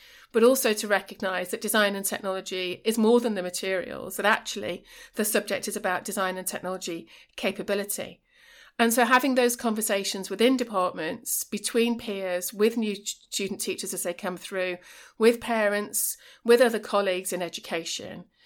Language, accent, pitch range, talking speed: English, British, 185-230 Hz, 155 wpm